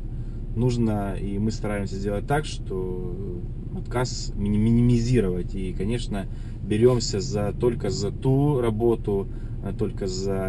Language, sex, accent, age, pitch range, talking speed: Russian, male, native, 20-39, 100-120 Hz, 105 wpm